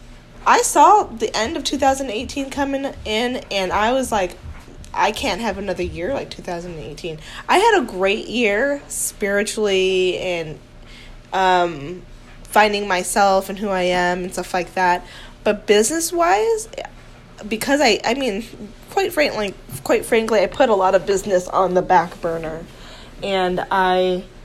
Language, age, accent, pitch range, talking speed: English, 10-29, American, 180-230 Hz, 140 wpm